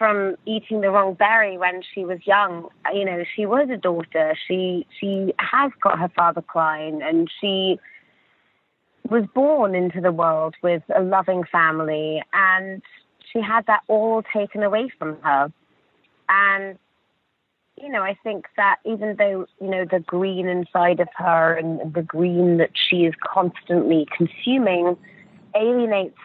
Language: English